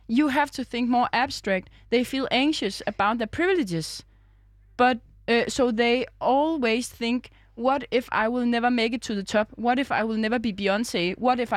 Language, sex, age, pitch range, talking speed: Danish, female, 20-39, 195-250 Hz, 190 wpm